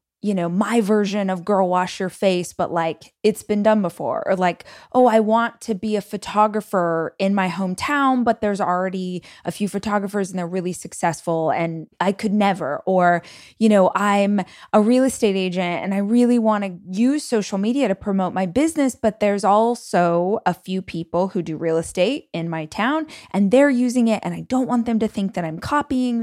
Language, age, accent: English, 20-39, American